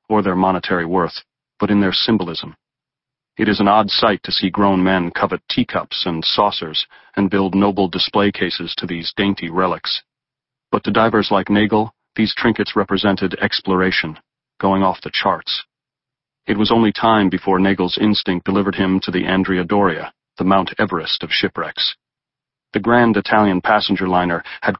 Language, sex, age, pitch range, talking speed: English, male, 40-59, 95-105 Hz, 160 wpm